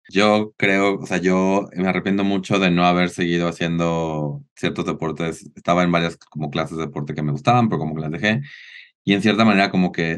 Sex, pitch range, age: male, 85-120 Hz, 30-49